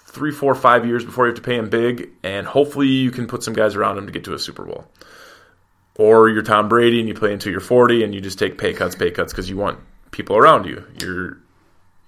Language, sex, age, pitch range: English, male, 20-39, 100-120 Hz